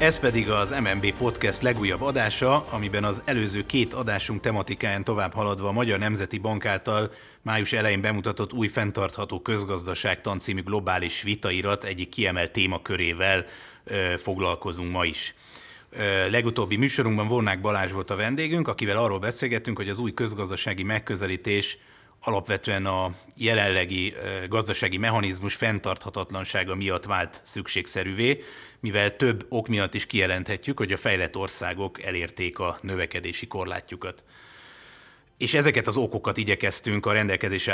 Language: Hungarian